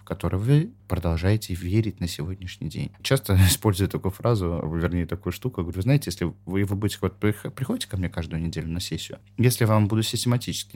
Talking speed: 180 wpm